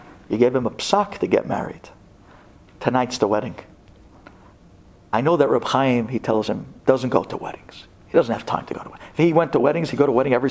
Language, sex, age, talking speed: English, male, 50-69, 235 wpm